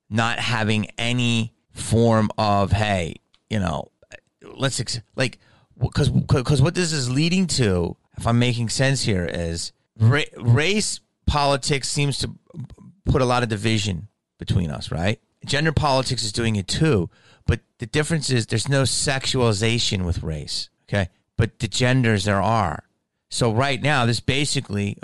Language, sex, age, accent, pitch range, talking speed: English, male, 30-49, American, 105-140 Hz, 145 wpm